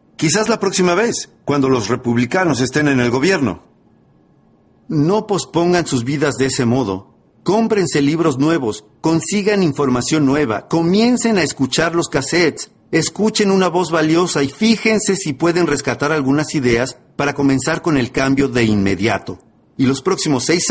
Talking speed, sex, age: 150 wpm, male, 50-69